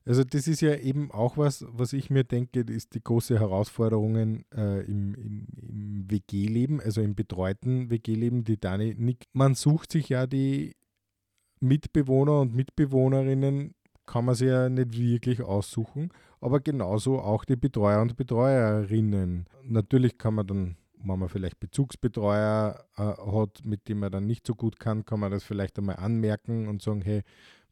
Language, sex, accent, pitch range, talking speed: German, male, Austrian, 100-125 Hz, 170 wpm